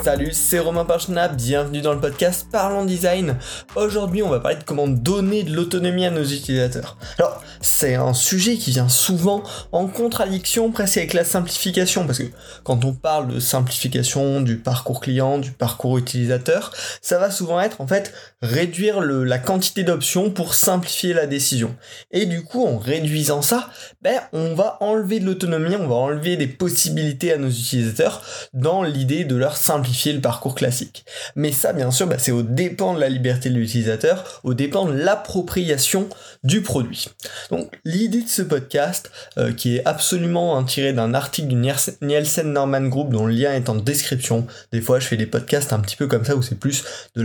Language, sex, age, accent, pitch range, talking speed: French, male, 20-39, French, 130-185 Hz, 190 wpm